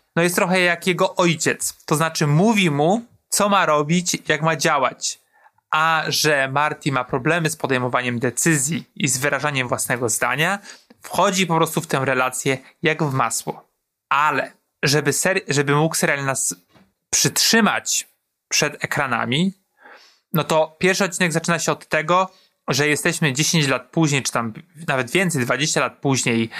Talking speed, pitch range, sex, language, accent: 150 wpm, 135-170 Hz, male, Polish, native